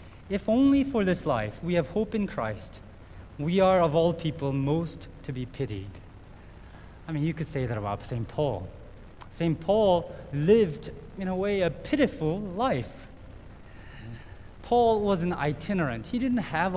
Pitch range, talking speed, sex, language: 140-210 Hz, 155 wpm, male, English